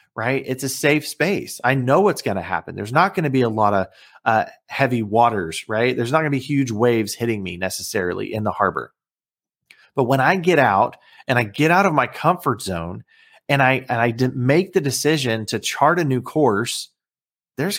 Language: English